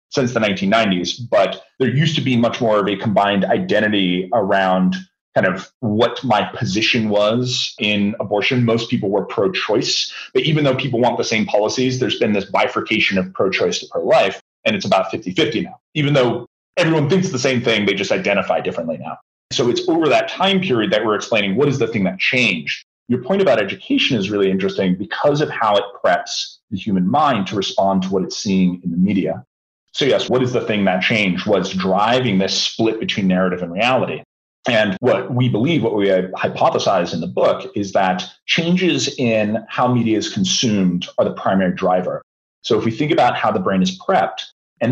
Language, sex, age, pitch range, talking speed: English, male, 30-49, 95-130 Hz, 200 wpm